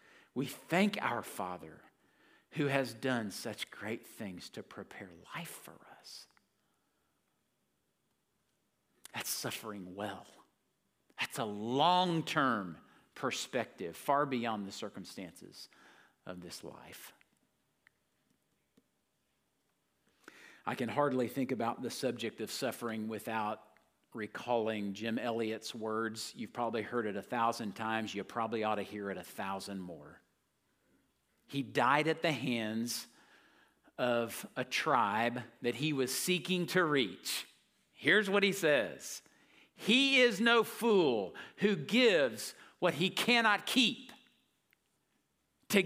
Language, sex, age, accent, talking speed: English, male, 50-69, American, 115 wpm